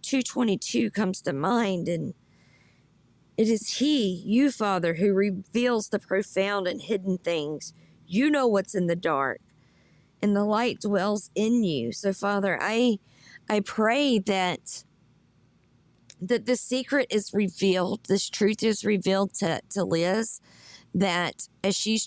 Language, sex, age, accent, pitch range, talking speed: English, female, 40-59, American, 180-210 Hz, 135 wpm